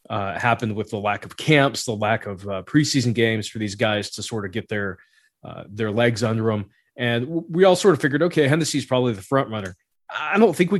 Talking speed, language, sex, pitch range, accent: 235 wpm, English, male, 110-140 Hz, American